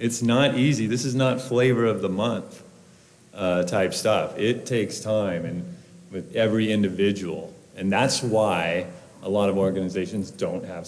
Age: 30-49